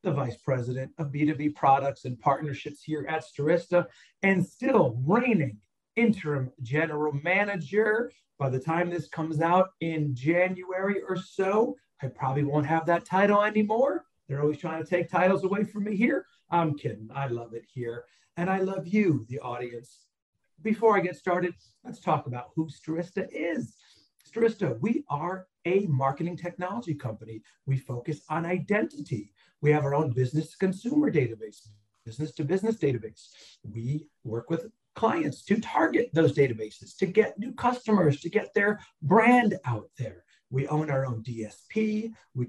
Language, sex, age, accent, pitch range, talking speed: English, male, 40-59, American, 135-195 Hz, 160 wpm